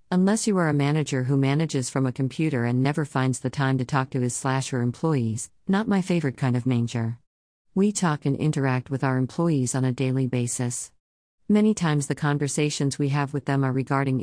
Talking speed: 205 wpm